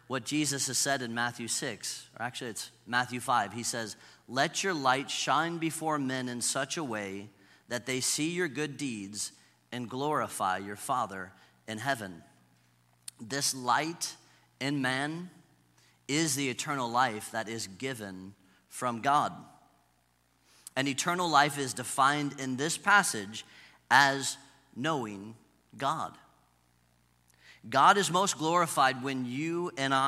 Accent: American